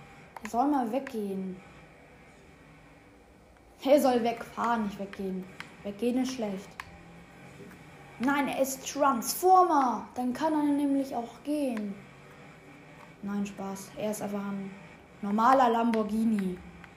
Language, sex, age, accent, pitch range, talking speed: German, female, 10-29, German, 195-265 Hz, 105 wpm